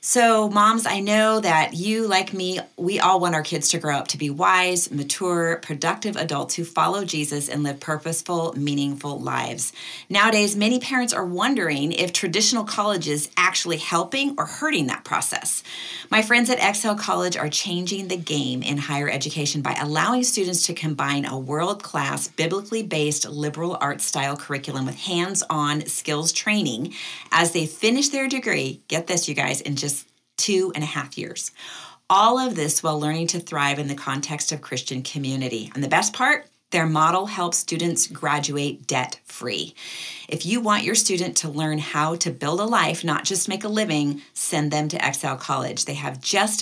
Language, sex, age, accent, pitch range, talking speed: English, female, 40-59, American, 150-195 Hz, 170 wpm